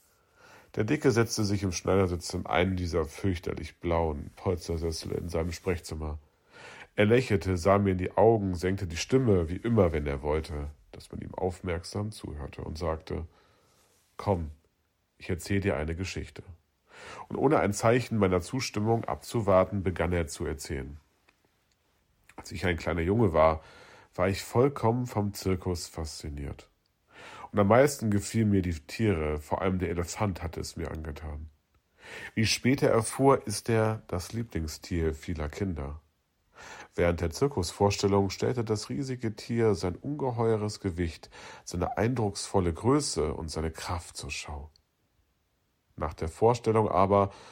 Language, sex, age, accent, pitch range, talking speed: German, male, 40-59, German, 85-105 Hz, 145 wpm